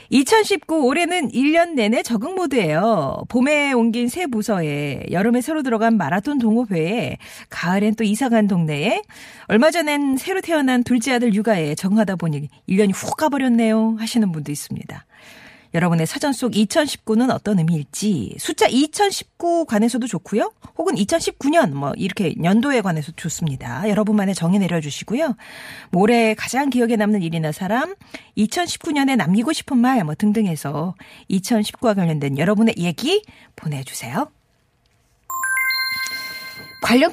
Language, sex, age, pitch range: Korean, female, 40-59, 195-275 Hz